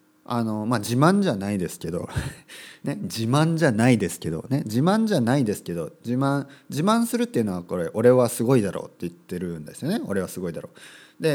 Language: Japanese